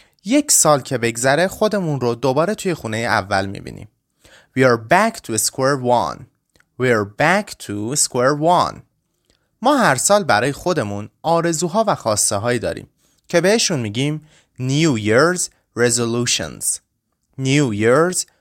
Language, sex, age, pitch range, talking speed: Persian, male, 30-49, 115-170 Hz, 135 wpm